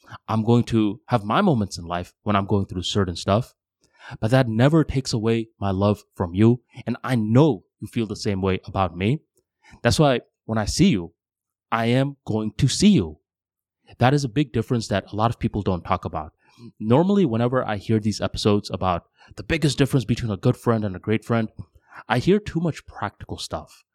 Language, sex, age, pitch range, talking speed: English, male, 20-39, 105-130 Hz, 205 wpm